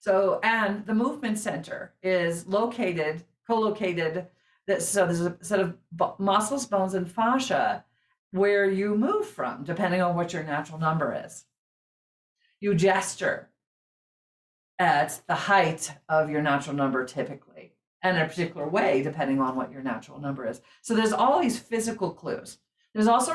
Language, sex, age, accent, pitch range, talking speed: English, female, 50-69, American, 175-220 Hz, 150 wpm